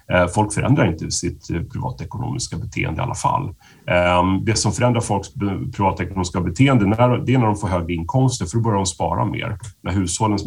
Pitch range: 95-120 Hz